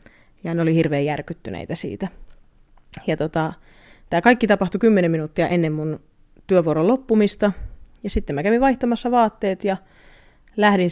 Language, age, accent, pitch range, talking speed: Finnish, 30-49, native, 160-195 Hz, 130 wpm